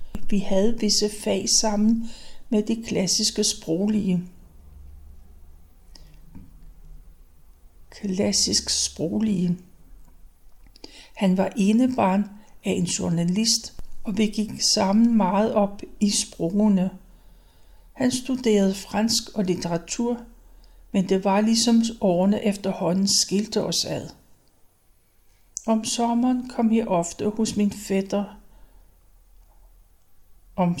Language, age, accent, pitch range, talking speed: Danish, 60-79, native, 170-220 Hz, 95 wpm